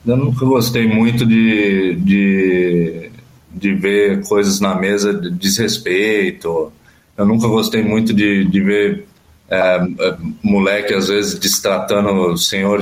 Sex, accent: male, Brazilian